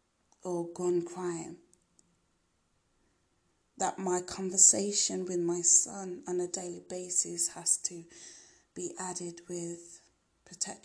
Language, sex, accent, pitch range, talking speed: English, female, British, 170-185 Hz, 105 wpm